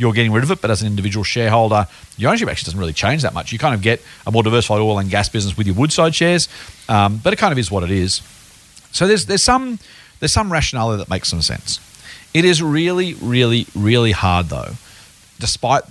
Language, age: English, 40-59